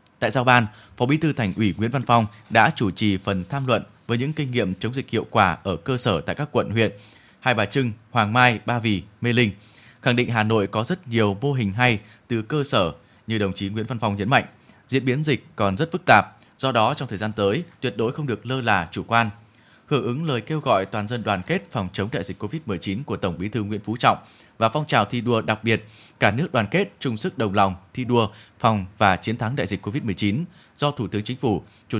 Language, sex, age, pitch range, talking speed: Vietnamese, male, 20-39, 105-130 Hz, 250 wpm